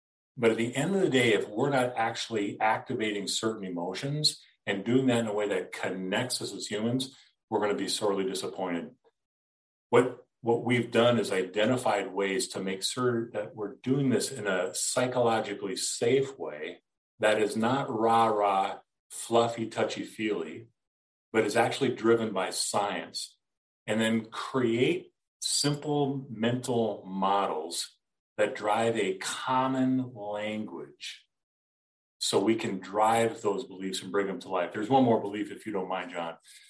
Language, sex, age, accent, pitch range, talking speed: English, male, 40-59, American, 95-125 Hz, 150 wpm